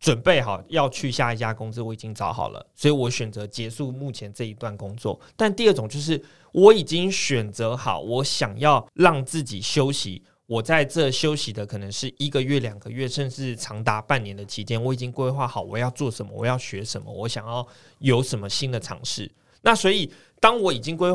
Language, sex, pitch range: Chinese, male, 115-150 Hz